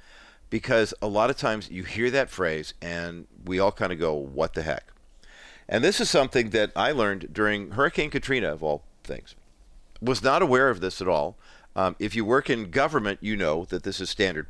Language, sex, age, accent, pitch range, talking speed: English, male, 50-69, American, 90-120 Hz, 205 wpm